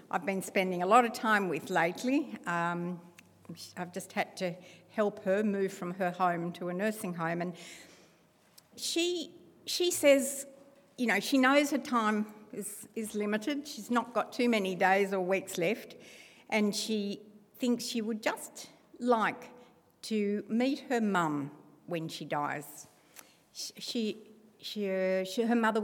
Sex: female